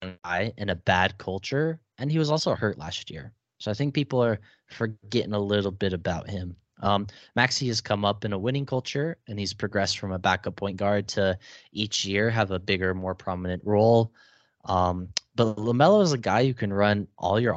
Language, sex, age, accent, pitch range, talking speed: English, male, 10-29, American, 95-125 Hz, 205 wpm